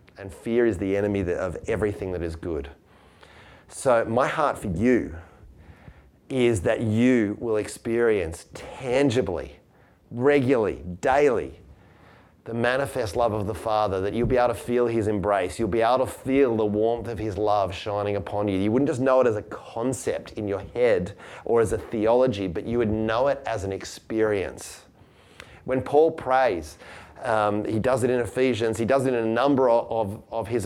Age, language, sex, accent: 30-49, English, male, Australian